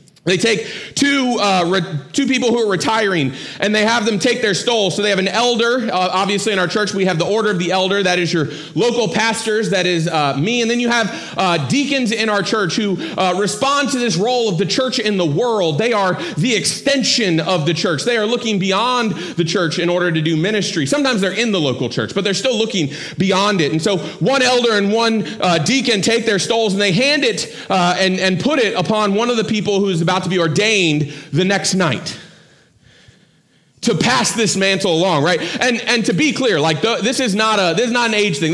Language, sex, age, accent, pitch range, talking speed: English, male, 30-49, American, 180-230 Hz, 235 wpm